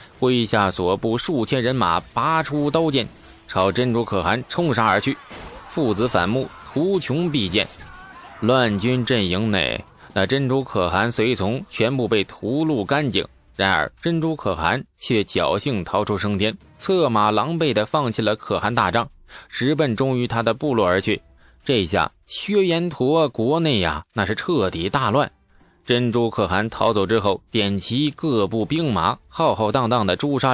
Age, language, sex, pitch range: 20-39, Chinese, male, 100-145 Hz